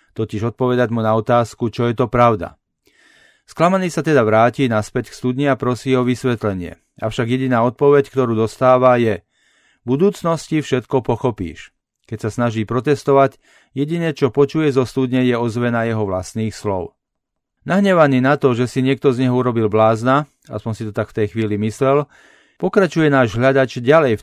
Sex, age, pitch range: male, 40-59, 115-140 Hz